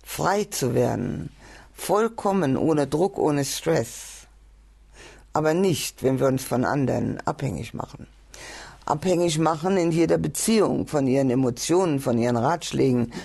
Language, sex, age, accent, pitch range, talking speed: German, female, 50-69, German, 125-170 Hz, 125 wpm